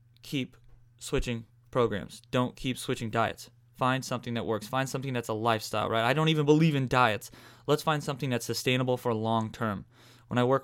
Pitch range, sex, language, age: 115-130 Hz, male, English, 20-39